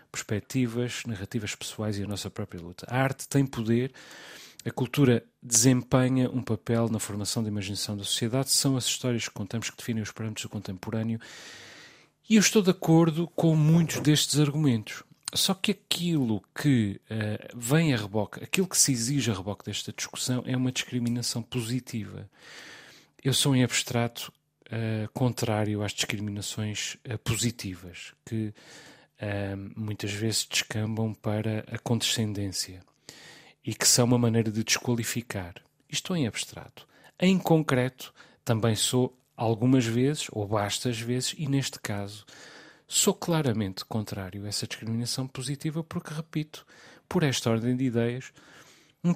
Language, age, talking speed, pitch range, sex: Portuguese, 30-49, 140 wpm, 110-145 Hz, male